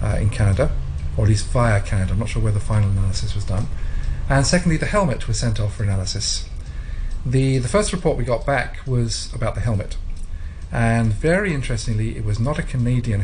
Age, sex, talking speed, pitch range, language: 40-59, male, 205 wpm, 100-115 Hz, English